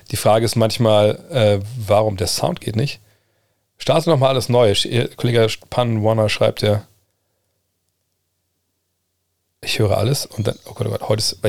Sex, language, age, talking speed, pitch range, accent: male, German, 40-59, 155 wpm, 100-120 Hz, German